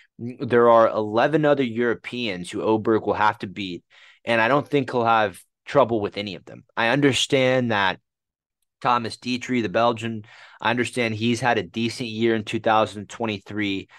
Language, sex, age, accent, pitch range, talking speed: English, male, 30-49, American, 100-125 Hz, 165 wpm